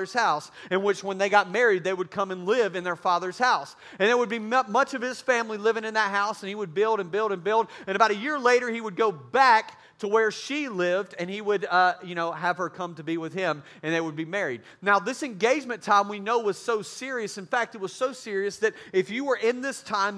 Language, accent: English, American